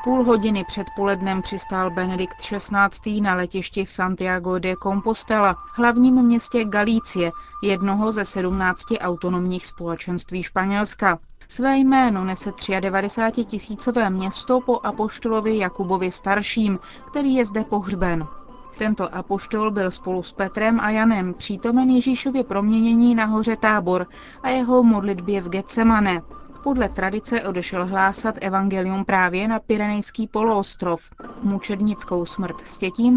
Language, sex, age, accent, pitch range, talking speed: Czech, female, 30-49, native, 185-230 Hz, 120 wpm